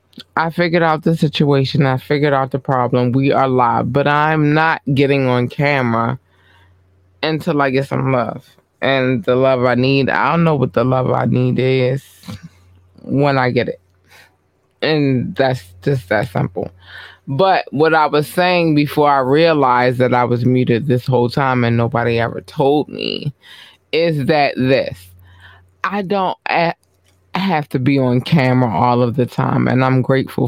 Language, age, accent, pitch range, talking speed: English, 20-39, American, 115-150 Hz, 170 wpm